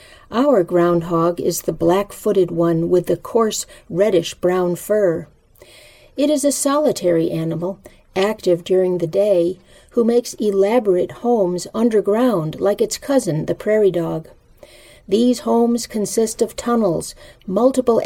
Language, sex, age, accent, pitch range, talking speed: English, female, 50-69, American, 175-225 Hz, 125 wpm